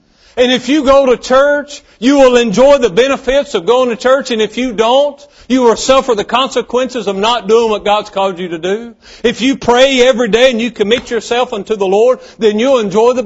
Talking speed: 220 wpm